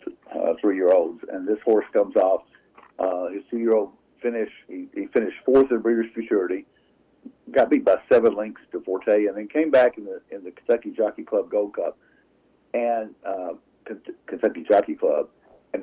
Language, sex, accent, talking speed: English, male, American, 165 wpm